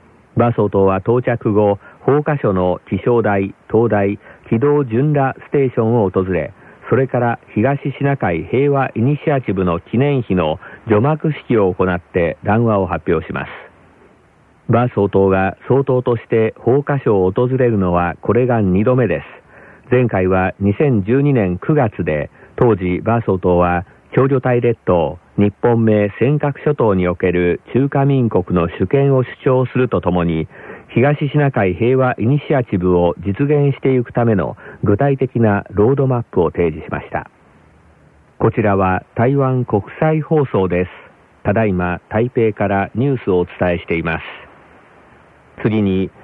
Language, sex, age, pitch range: Korean, male, 50-69, 95-140 Hz